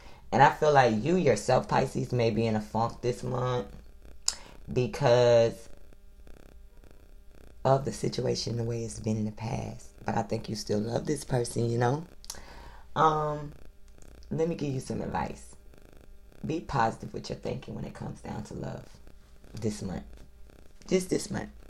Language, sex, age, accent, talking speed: English, female, 20-39, American, 160 wpm